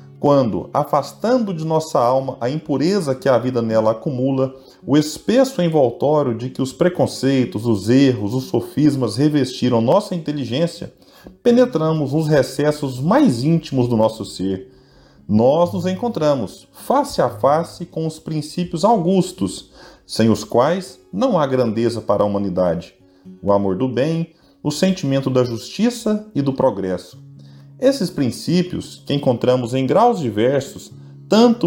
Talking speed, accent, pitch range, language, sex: 135 wpm, Brazilian, 125-170 Hz, Portuguese, male